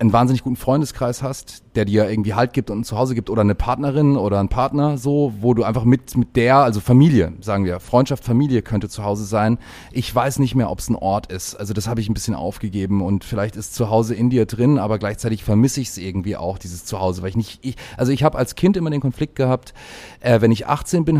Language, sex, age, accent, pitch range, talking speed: German, male, 30-49, German, 110-140 Hz, 250 wpm